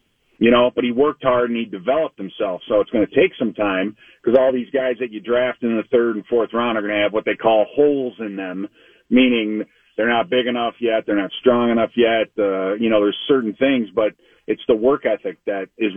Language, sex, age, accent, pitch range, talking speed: English, male, 40-59, American, 110-135 Hz, 240 wpm